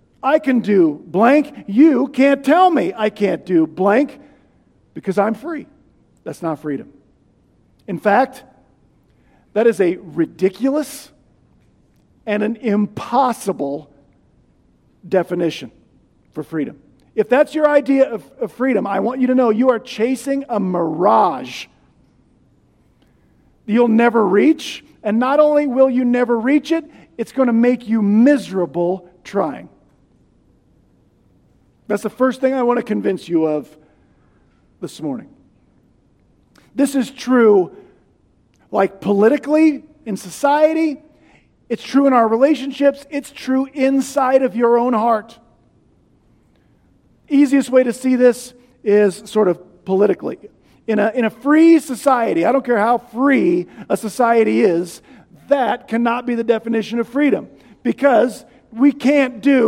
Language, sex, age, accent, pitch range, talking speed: English, male, 50-69, American, 205-275 Hz, 130 wpm